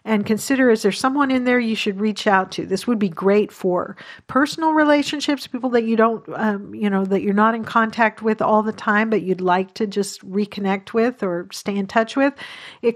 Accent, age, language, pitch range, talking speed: American, 50-69, English, 190-225 Hz, 220 wpm